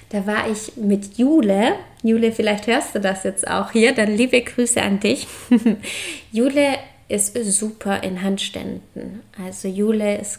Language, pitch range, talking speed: German, 195-230 Hz, 150 wpm